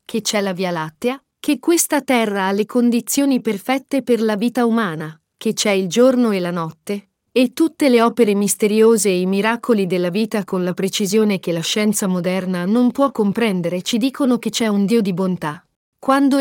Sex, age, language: female, 40-59, Italian